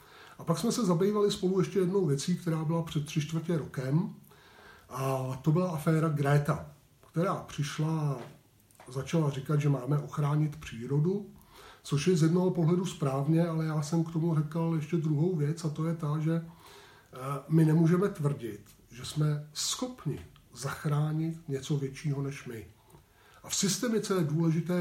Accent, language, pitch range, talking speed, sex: native, Czech, 140-165 Hz, 155 wpm, male